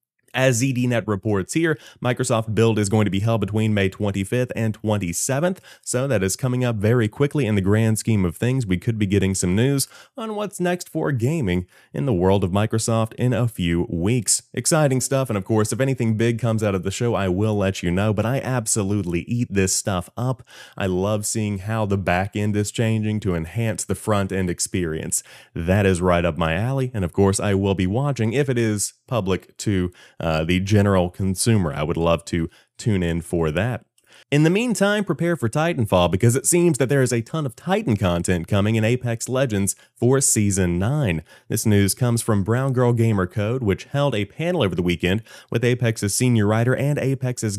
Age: 30-49